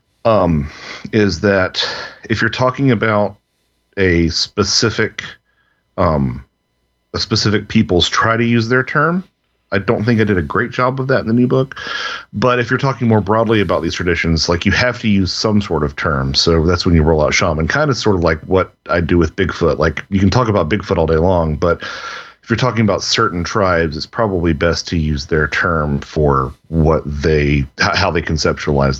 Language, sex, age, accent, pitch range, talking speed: English, male, 40-59, American, 80-115 Hz, 200 wpm